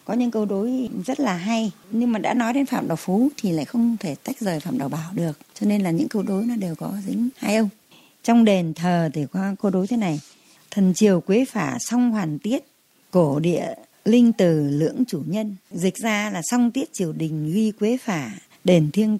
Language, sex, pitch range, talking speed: Vietnamese, female, 175-230 Hz, 225 wpm